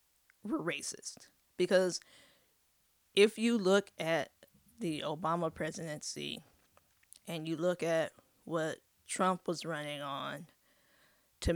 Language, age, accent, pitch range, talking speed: English, 20-39, American, 165-185 Hz, 105 wpm